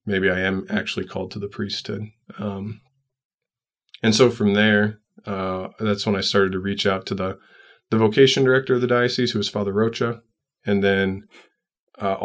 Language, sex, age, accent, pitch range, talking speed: English, male, 20-39, American, 100-115 Hz, 175 wpm